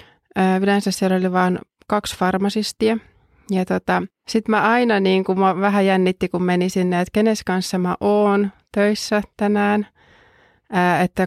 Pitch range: 180-205 Hz